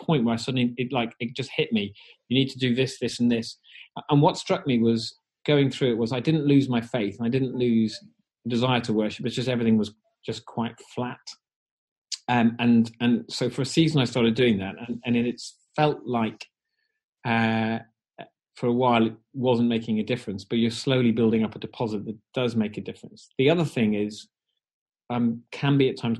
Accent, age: British, 30-49